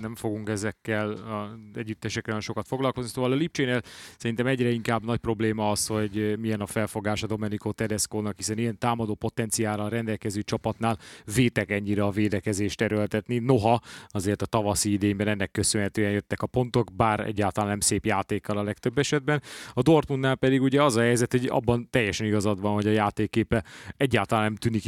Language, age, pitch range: Hungarian, 30-49, 105-120 Hz